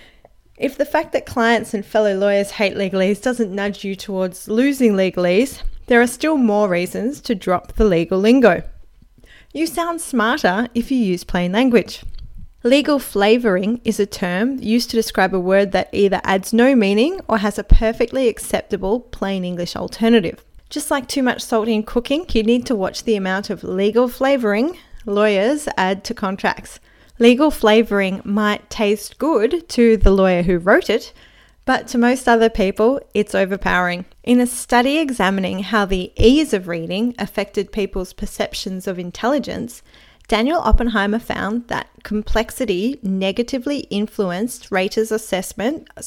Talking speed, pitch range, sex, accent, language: 155 wpm, 195-245 Hz, female, Australian, English